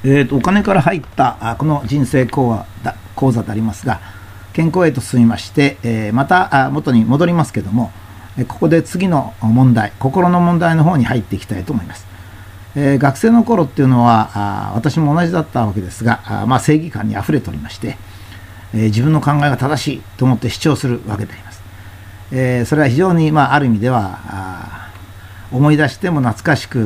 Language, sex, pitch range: Japanese, male, 100-150 Hz